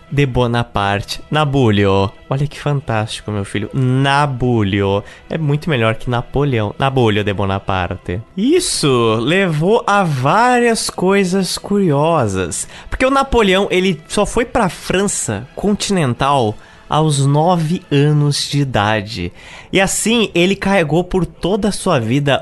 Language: Portuguese